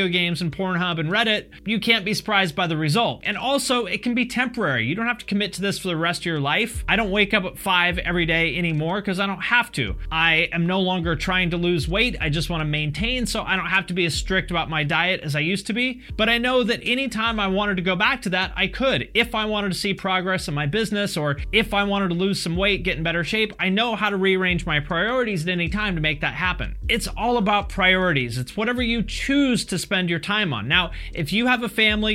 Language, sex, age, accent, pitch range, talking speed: English, male, 30-49, American, 175-215 Hz, 265 wpm